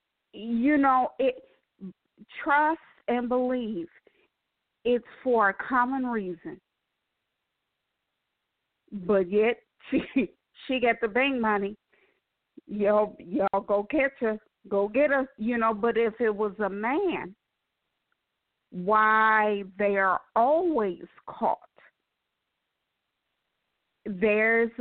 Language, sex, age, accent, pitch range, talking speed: English, female, 40-59, American, 205-245 Hz, 100 wpm